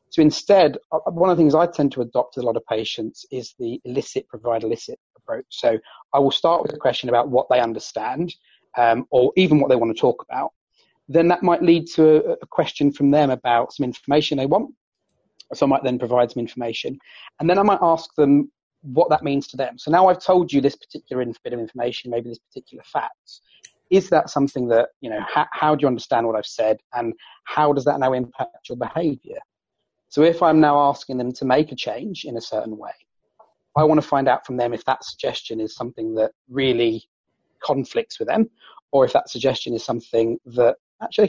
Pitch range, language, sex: 125-165 Hz, English, male